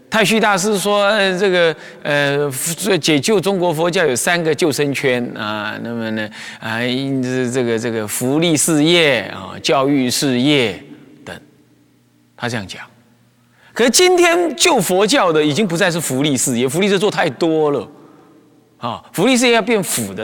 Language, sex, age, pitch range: Chinese, male, 30-49, 120-195 Hz